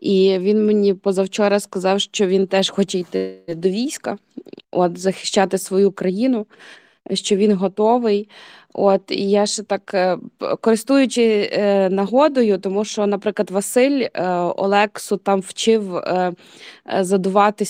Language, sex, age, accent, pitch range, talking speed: Ukrainian, female, 20-39, native, 180-205 Hz, 115 wpm